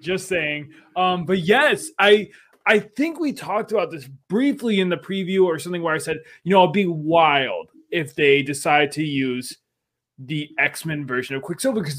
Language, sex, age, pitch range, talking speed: English, male, 20-39, 150-190 Hz, 185 wpm